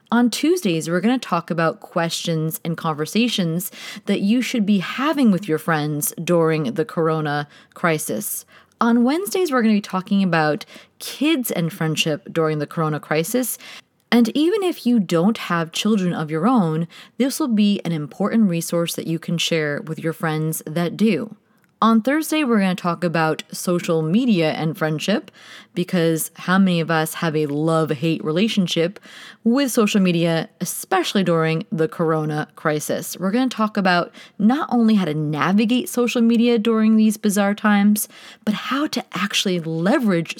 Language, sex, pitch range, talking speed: English, female, 165-225 Hz, 165 wpm